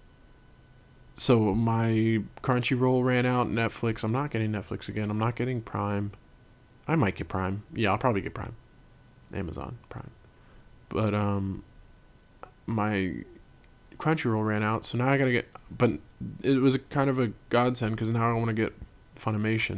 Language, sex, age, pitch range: English, male, 20-39, 100-140 Hz